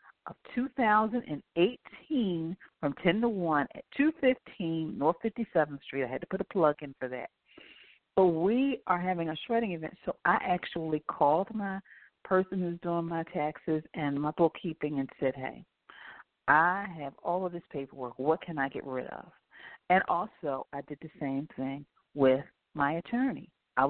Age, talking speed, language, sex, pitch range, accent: 40-59, 165 wpm, English, female, 140-190 Hz, American